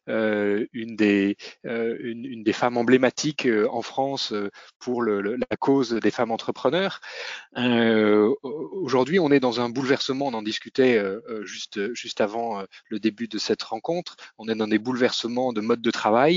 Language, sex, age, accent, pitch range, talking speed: French, male, 30-49, French, 110-135 Hz, 185 wpm